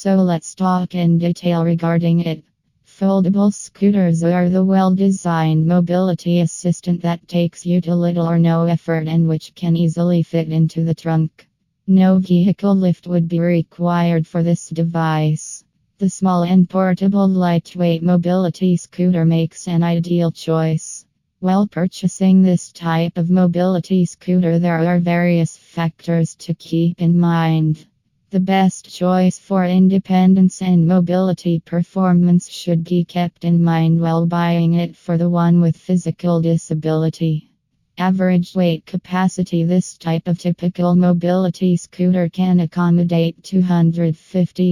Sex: female